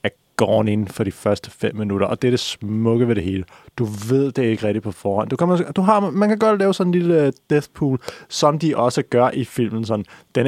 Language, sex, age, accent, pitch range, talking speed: Danish, male, 30-49, native, 110-135 Hz, 235 wpm